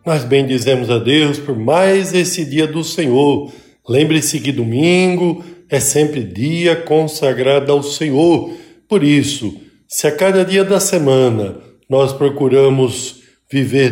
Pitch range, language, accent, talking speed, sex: 125-155 Hz, Portuguese, Brazilian, 130 wpm, male